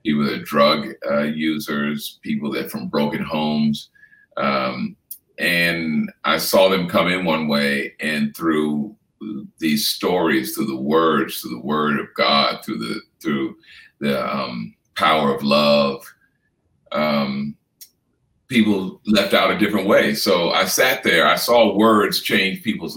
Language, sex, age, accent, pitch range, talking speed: English, male, 50-69, American, 80-115 Hz, 150 wpm